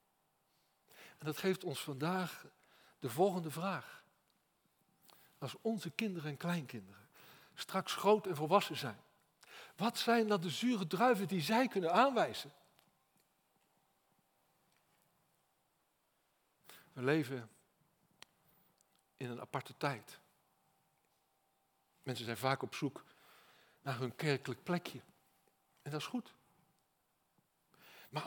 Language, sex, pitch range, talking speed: Dutch, male, 155-230 Hz, 105 wpm